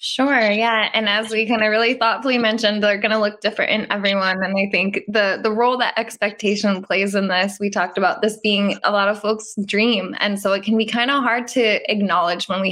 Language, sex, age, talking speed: English, female, 10-29, 235 wpm